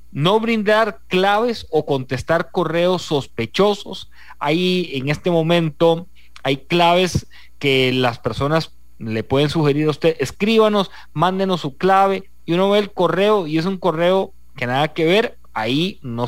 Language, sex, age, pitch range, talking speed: English, male, 30-49, 130-180 Hz, 145 wpm